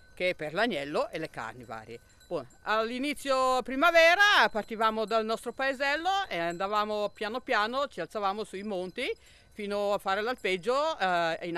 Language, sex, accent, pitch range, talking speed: Italian, female, native, 155-225 Hz, 135 wpm